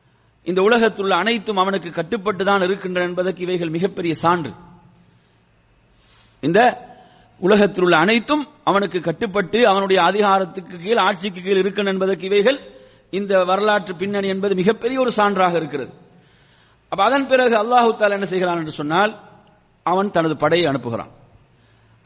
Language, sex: English, male